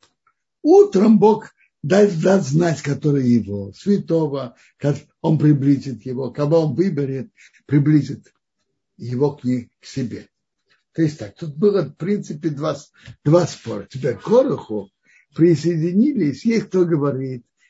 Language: Russian